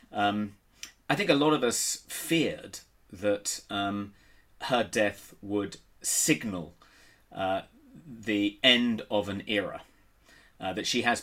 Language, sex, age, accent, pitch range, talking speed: English, male, 30-49, British, 90-105 Hz, 130 wpm